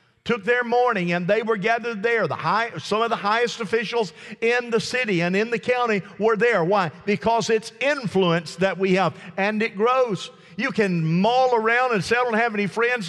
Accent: American